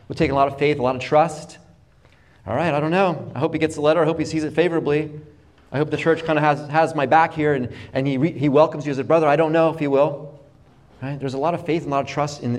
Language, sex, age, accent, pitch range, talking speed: English, male, 30-49, American, 110-155 Hz, 315 wpm